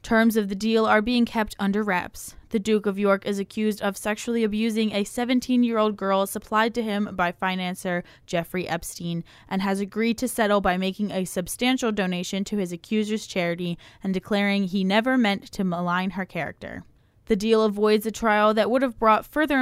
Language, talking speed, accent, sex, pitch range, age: English, 185 wpm, American, female, 180-220 Hz, 10-29